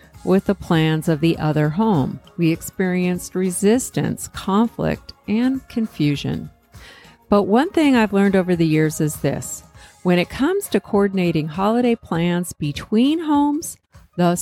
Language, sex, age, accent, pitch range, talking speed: English, female, 50-69, American, 170-240 Hz, 135 wpm